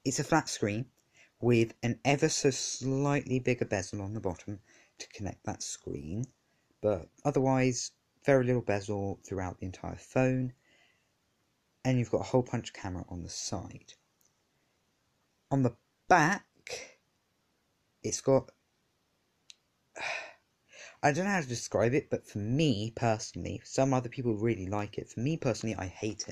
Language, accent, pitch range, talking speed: English, British, 100-130 Hz, 145 wpm